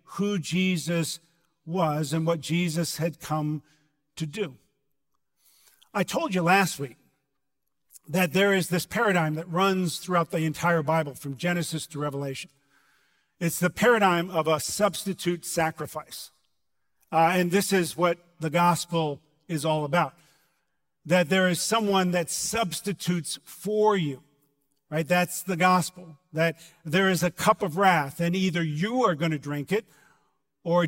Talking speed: 145 wpm